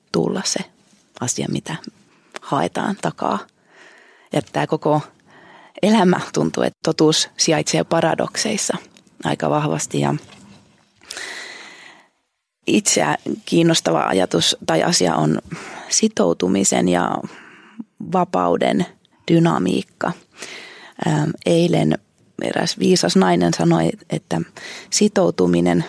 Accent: native